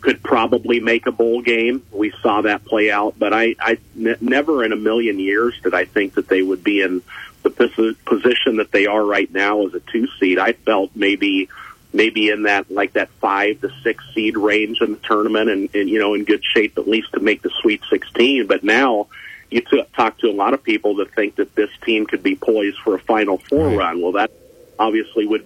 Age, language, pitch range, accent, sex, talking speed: 50-69, English, 105-145 Hz, American, male, 225 wpm